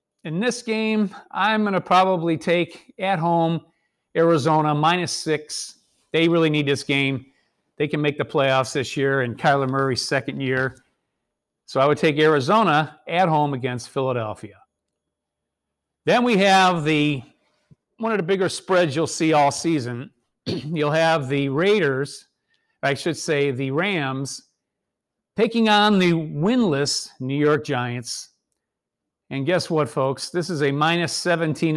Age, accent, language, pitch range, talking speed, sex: 50-69, American, English, 135-170 Hz, 145 wpm, male